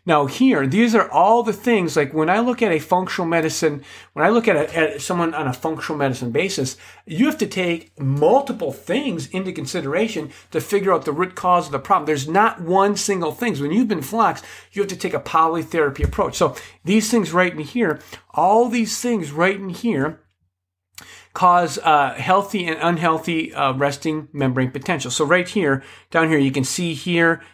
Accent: American